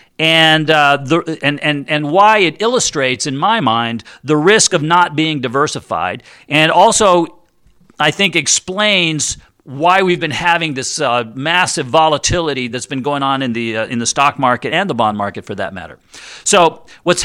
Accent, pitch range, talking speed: American, 135-175 Hz, 175 wpm